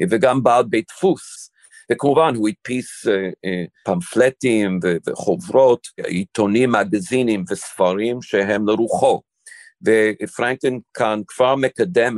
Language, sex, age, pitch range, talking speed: Hebrew, male, 50-69, 90-115 Hz, 105 wpm